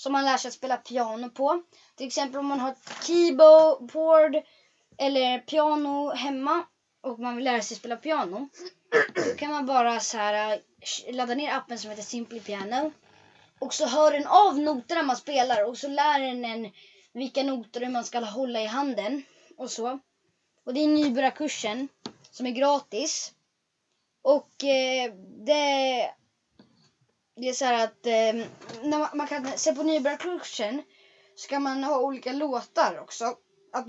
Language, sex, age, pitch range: Swedish, female, 20-39, 235-290 Hz